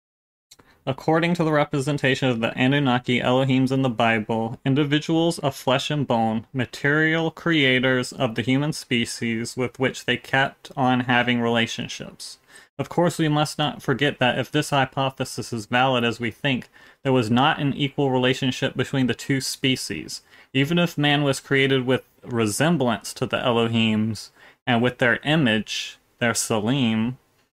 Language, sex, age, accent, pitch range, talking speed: Swedish, male, 30-49, American, 115-135 Hz, 150 wpm